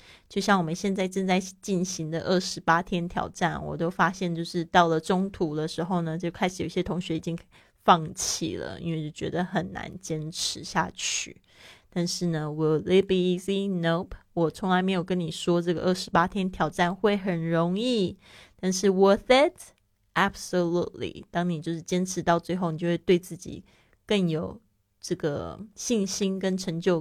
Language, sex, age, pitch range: Chinese, female, 20-39, 165-195 Hz